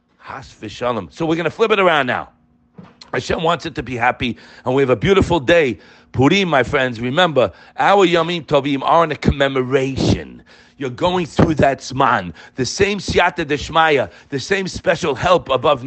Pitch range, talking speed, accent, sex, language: 150-225 Hz, 170 wpm, American, male, English